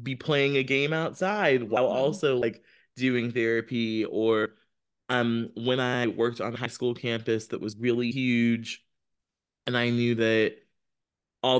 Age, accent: 20-39, American